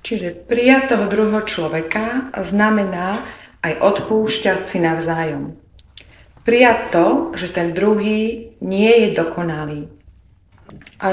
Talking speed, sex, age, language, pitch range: 95 wpm, female, 40-59, Slovak, 155-215 Hz